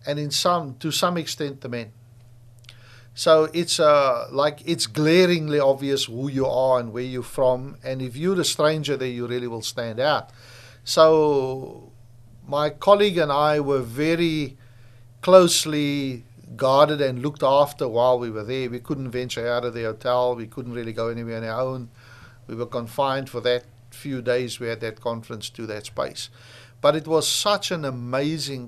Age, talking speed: 60-79, 175 wpm